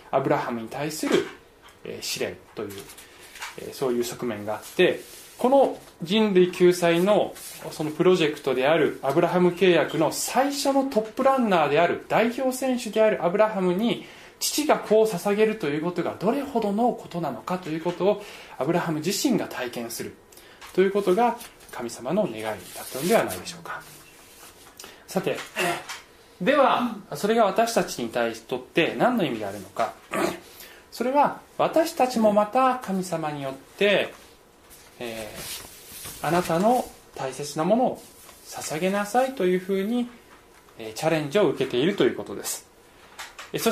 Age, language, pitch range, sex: 20-39, Japanese, 155-230 Hz, male